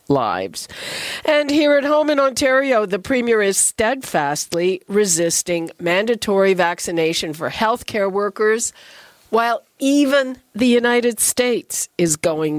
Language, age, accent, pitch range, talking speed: English, 50-69, American, 170-245 Hz, 120 wpm